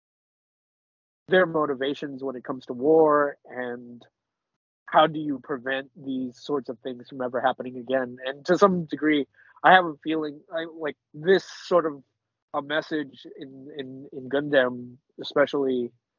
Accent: American